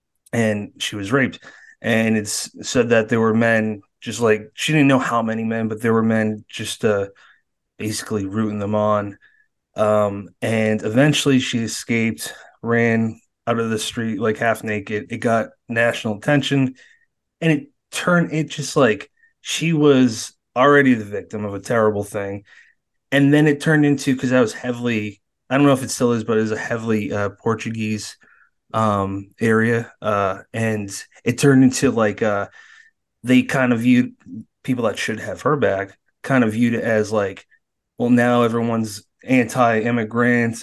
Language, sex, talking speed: English, male, 165 wpm